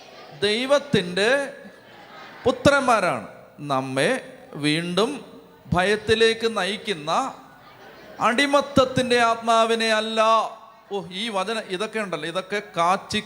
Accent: native